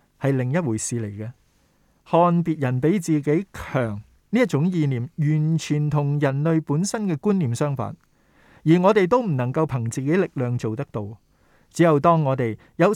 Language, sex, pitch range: Chinese, male, 125-175 Hz